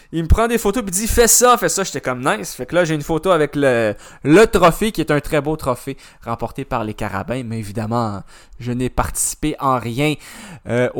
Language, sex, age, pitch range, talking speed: French, male, 20-39, 125-155 Hz, 230 wpm